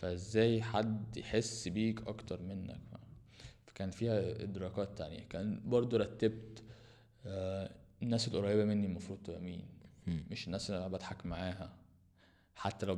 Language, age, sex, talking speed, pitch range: Arabic, 20-39, male, 125 wpm, 95-115 Hz